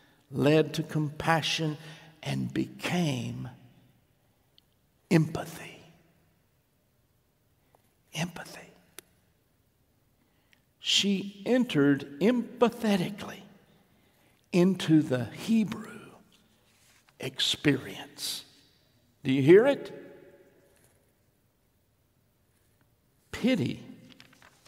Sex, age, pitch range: male, 60-79, 135-200 Hz